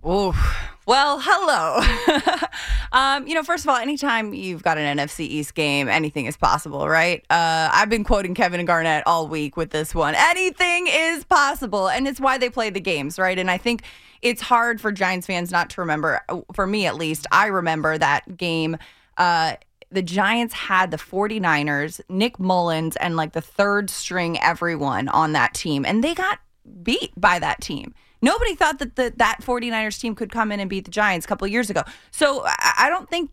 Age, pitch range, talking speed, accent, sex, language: 20-39, 160-235 Hz, 195 wpm, American, female, English